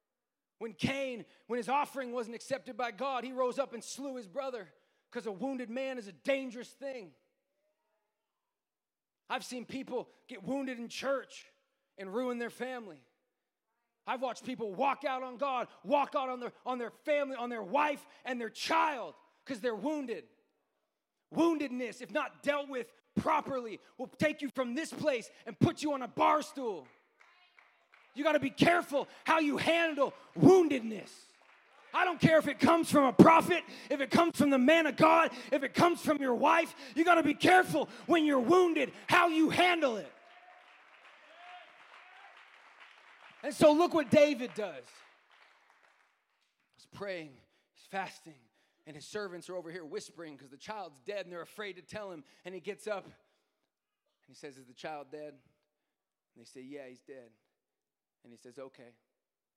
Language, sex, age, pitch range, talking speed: English, male, 30-49, 200-290 Hz, 170 wpm